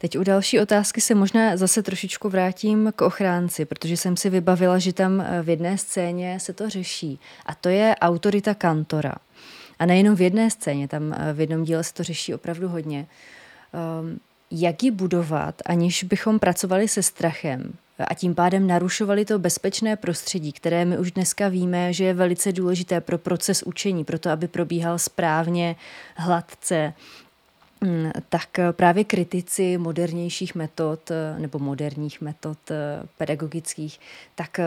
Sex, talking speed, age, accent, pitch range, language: female, 145 wpm, 20-39, native, 155-185 Hz, Czech